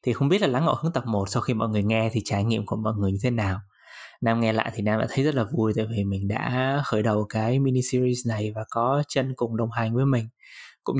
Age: 20-39